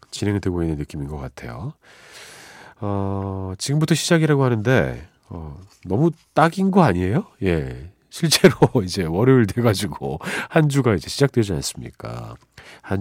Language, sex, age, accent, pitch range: Korean, male, 40-59, native, 90-145 Hz